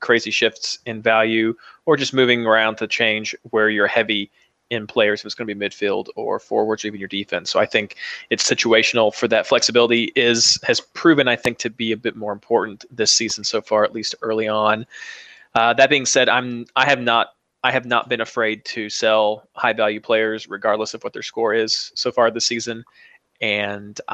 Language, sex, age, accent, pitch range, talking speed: English, male, 20-39, American, 110-130 Hz, 205 wpm